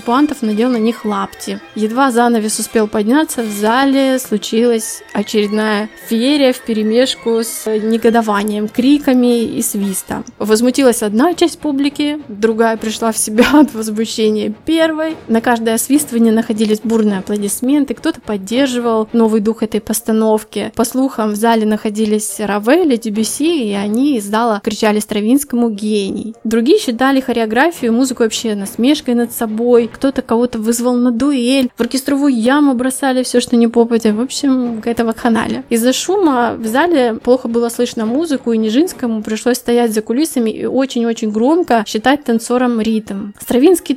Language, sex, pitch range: Russian, female, 220-255 Hz